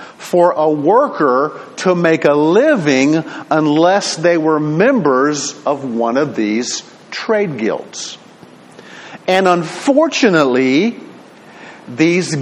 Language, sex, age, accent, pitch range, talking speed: English, male, 50-69, American, 155-220 Hz, 95 wpm